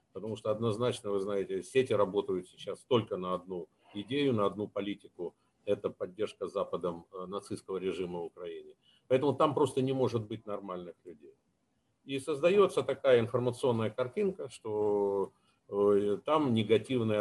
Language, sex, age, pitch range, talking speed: Russian, male, 50-69, 100-130 Hz, 135 wpm